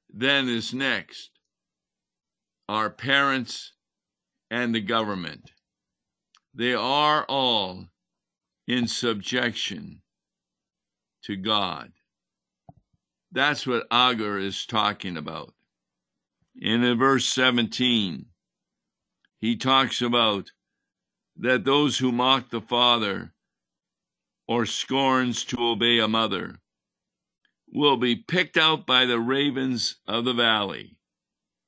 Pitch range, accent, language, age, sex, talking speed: 110-135 Hz, American, English, 50-69, male, 95 wpm